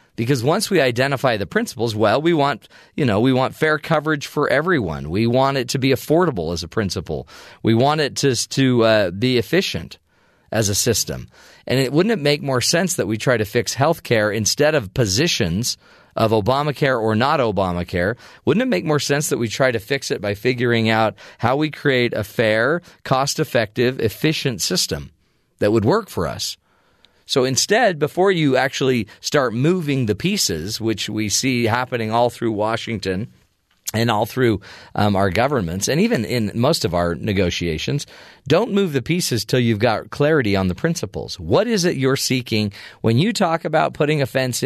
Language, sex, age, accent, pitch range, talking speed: English, male, 40-59, American, 110-145 Hz, 185 wpm